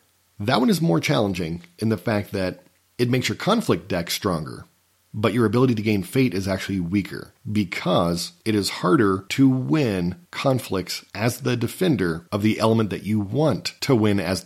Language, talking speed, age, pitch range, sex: English, 180 wpm, 40-59, 90-115 Hz, male